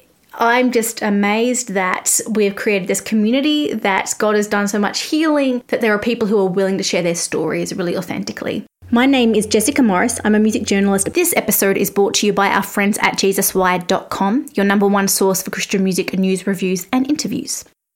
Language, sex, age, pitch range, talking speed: English, female, 20-39, 195-245 Hz, 195 wpm